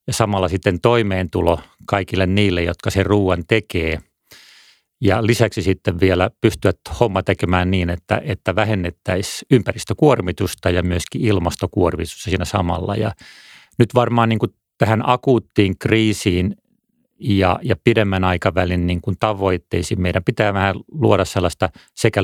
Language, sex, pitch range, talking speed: Finnish, male, 95-110 Hz, 120 wpm